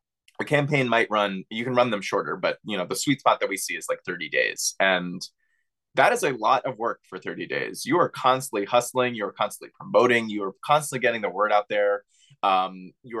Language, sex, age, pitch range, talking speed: English, male, 20-39, 95-130 Hz, 225 wpm